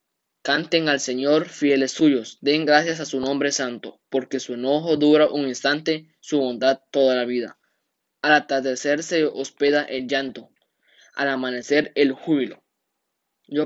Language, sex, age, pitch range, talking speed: Spanish, male, 10-29, 140-160 Hz, 145 wpm